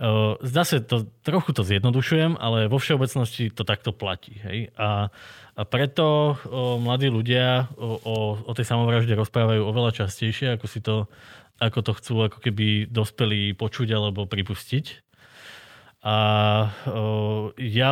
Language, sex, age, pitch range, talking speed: Slovak, male, 20-39, 105-130 Hz, 135 wpm